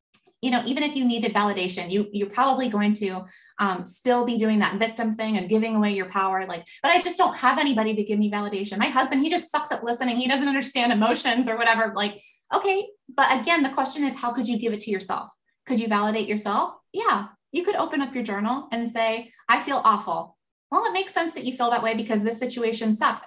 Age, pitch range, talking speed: 20-39, 195-240 Hz, 235 wpm